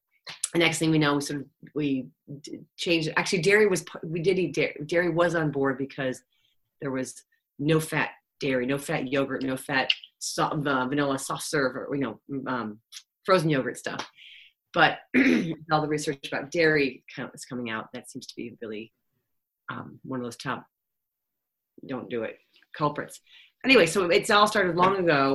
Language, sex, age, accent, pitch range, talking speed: English, female, 40-59, American, 130-160 Hz, 180 wpm